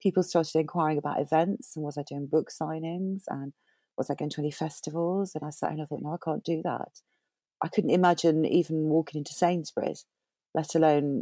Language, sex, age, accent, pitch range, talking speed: English, female, 40-59, British, 145-175 Hz, 210 wpm